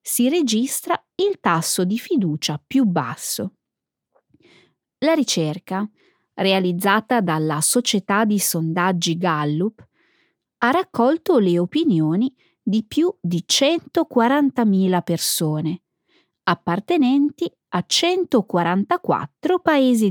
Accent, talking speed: native, 85 wpm